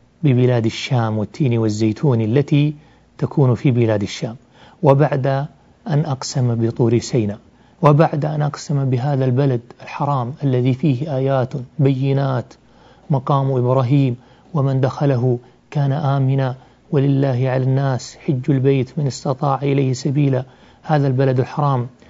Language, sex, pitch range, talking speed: Arabic, male, 130-155 Hz, 115 wpm